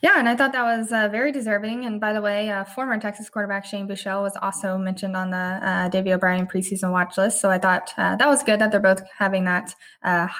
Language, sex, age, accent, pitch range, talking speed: English, female, 20-39, American, 185-220 Hz, 250 wpm